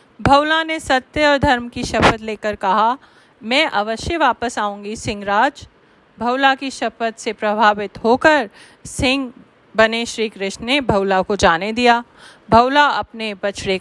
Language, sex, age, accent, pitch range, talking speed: Hindi, female, 40-59, native, 210-260 Hz, 140 wpm